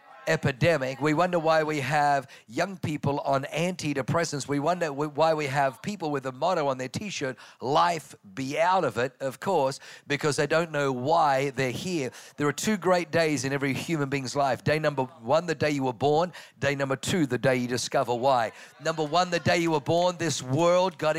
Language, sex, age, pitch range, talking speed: English, male, 50-69, 150-210 Hz, 205 wpm